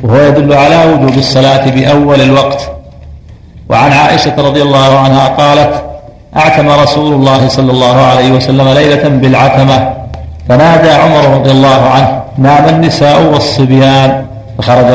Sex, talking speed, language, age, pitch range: male, 125 wpm, Arabic, 50-69, 130-145 Hz